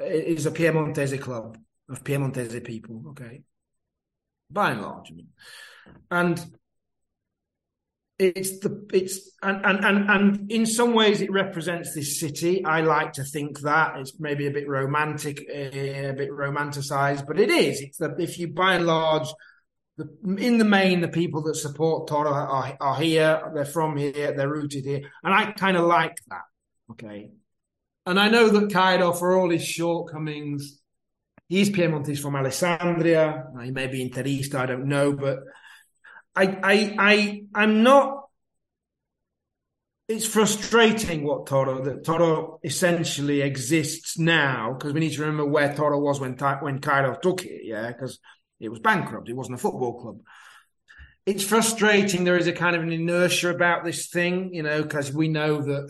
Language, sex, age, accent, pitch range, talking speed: English, male, 30-49, British, 140-180 Hz, 160 wpm